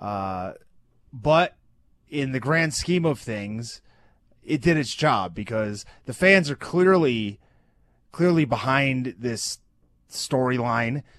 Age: 30-49